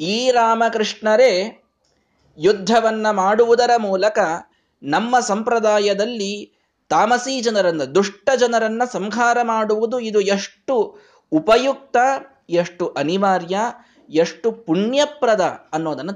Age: 20-39